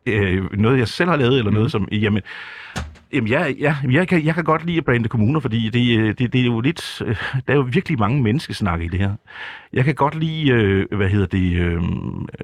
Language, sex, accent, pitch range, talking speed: Danish, male, native, 95-130 Hz, 215 wpm